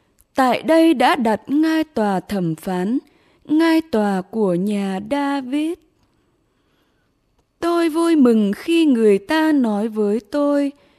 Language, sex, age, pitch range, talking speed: English, female, 20-39, 215-310 Hz, 120 wpm